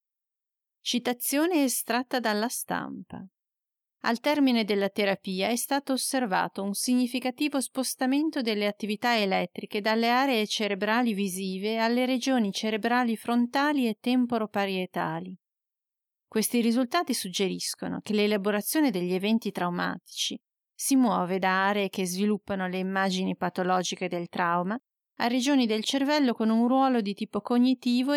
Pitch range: 195-250 Hz